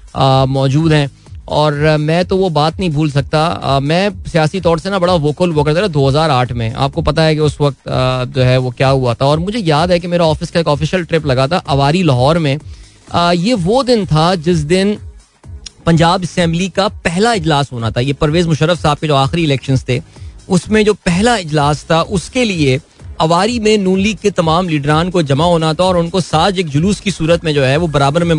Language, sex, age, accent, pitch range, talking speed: Hindi, male, 20-39, native, 140-175 Hz, 220 wpm